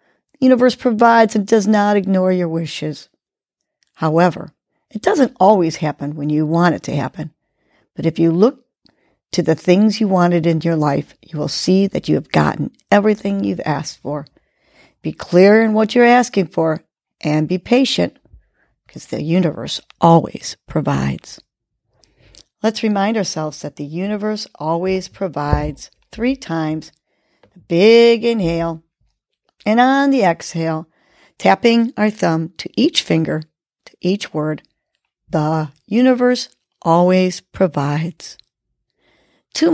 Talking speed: 130 wpm